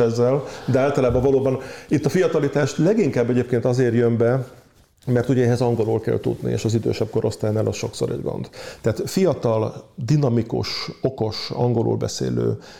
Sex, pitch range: male, 110-130 Hz